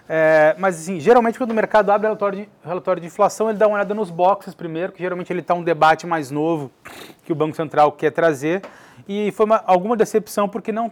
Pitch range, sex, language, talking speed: 170-205 Hz, male, Portuguese, 225 wpm